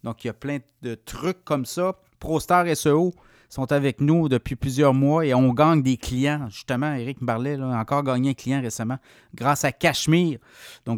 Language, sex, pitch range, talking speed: French, male, 130-165 Hz, 190 wpm